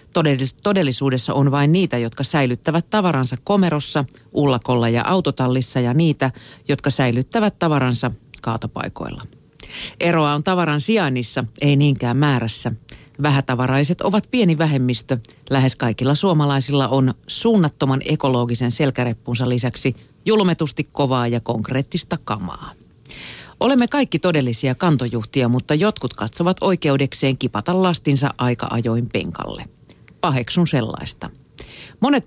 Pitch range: 125-165 Hz